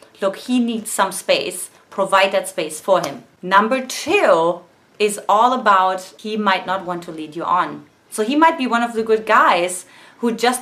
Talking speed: 190 wpm